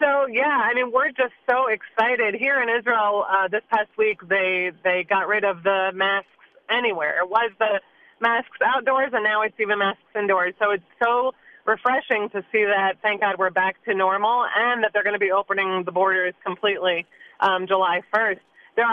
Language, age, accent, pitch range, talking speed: English, 30-49, American, 195-235 Hz, 195 wpm